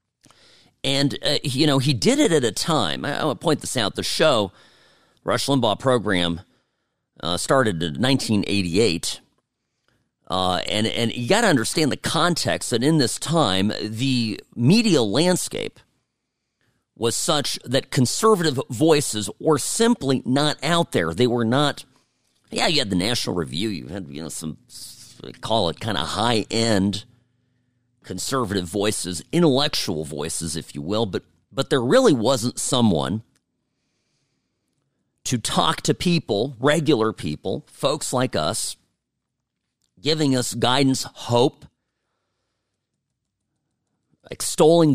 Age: 40-59